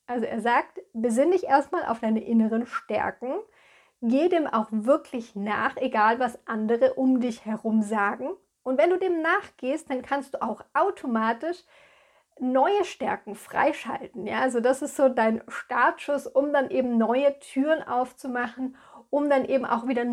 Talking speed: 155 wpm